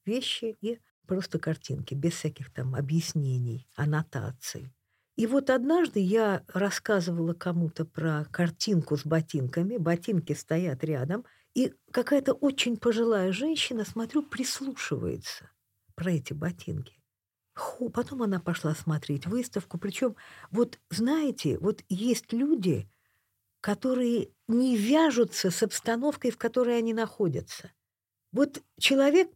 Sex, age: female, 50-69